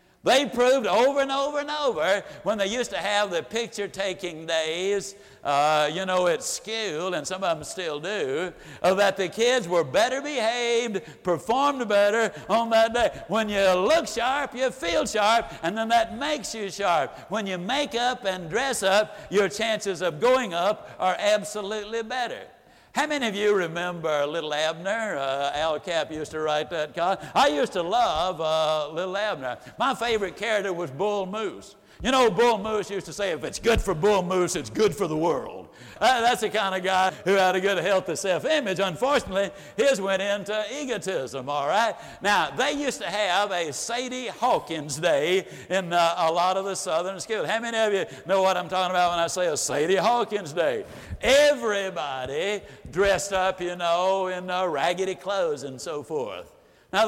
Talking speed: 185 wpm